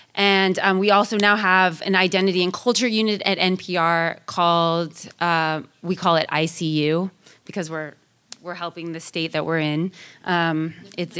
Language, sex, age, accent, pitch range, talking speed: English, female, 30-49, American, 175-215 Hz, 160 wpm